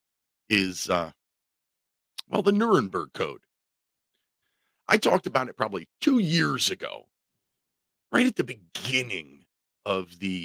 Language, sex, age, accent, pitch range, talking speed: English, male, 40-59, American, 120-185 Hz, 115 wpm